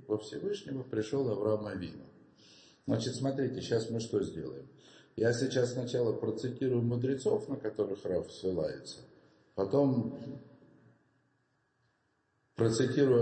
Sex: male